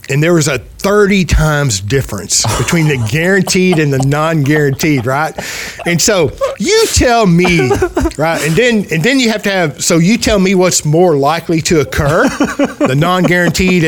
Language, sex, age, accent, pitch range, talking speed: English, male, 50-69, American, 135-170 Hz, 170 wpm